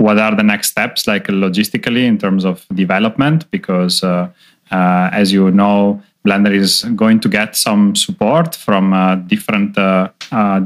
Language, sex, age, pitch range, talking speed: English, male, 30-49, 95-115 Hz, 165 wpm